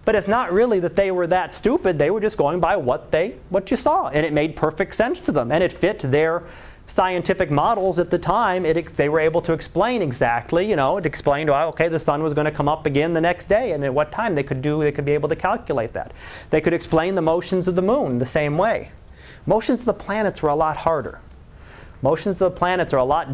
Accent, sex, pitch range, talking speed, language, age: American, male, 150-200 Hz, 255 wpm, English, 30-49